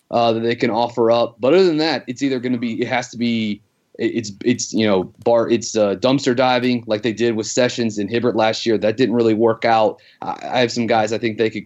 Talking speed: 260 wpm